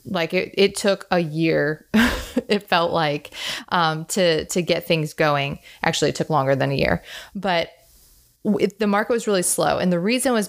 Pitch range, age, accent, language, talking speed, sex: 160-200 Hz, 20-39, American, English, 195 wpm, female